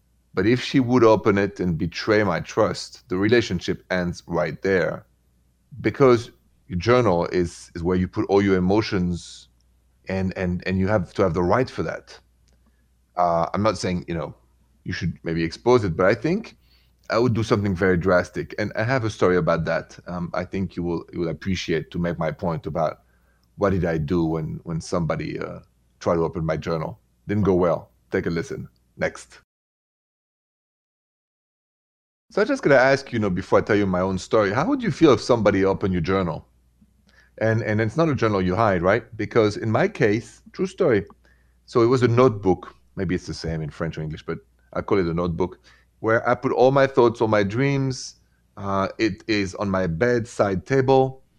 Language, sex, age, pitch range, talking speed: English, male, 30-49, 85-115 Hz, 200 wpm